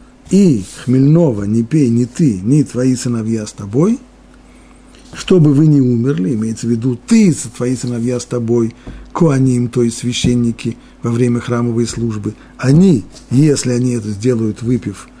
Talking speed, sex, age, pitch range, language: 155 wpm, male, 40-59, 110-145 Hz, Russian